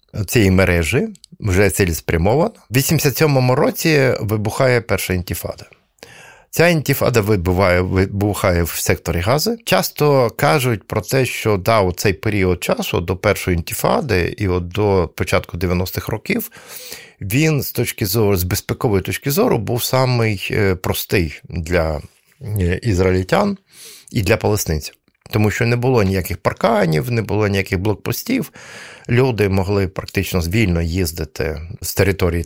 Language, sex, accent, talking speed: Ukrainian, male, native, 125 wpm